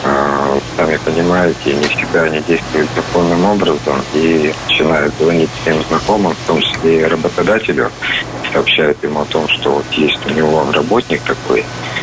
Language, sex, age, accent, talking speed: Russian, male, 50-69, native, 145 wpm